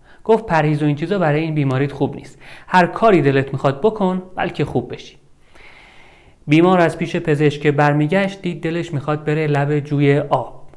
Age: 40-59